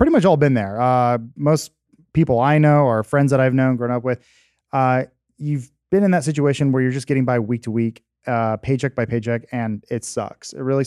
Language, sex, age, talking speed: English, male, 30-49, 220 wpm